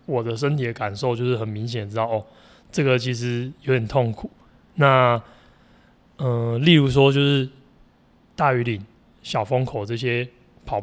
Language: Chinese